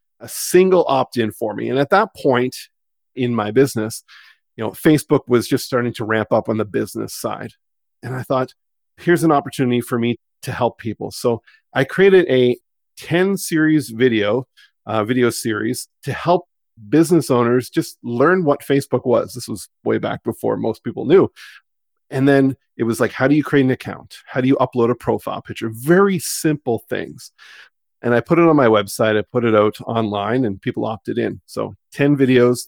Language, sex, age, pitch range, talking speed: English, male, 40-59, 115-145 Hz, 190 wpm